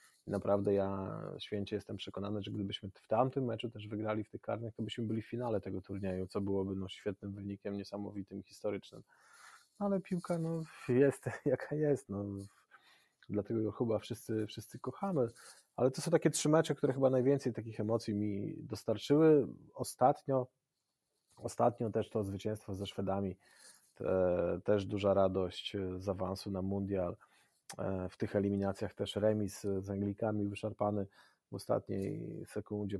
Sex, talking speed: male, 145 wpm